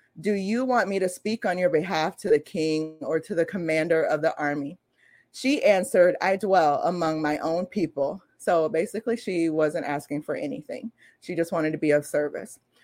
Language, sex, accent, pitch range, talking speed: English, female, American, 155-195 Hz, 190 wpm